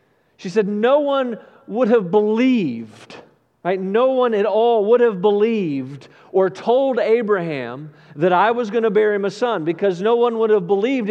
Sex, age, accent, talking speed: male, 40-59, American, 180 wpm